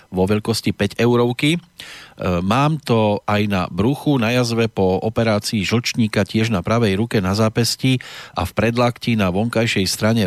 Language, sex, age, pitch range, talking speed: Slovak, male, 40-59, 105-125 Hz, 150 wpm